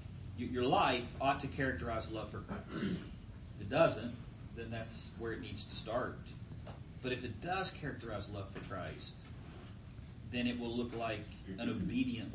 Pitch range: 105-135 Hz